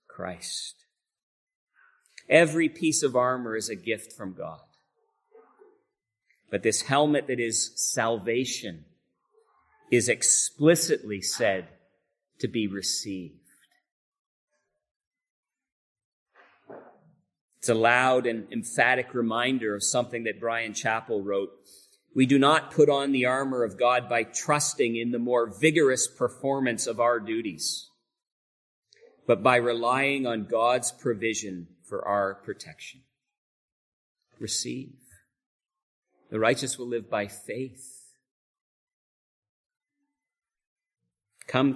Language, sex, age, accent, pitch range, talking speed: English, male, 40-59, American, 110-160 Hz, 100 wpm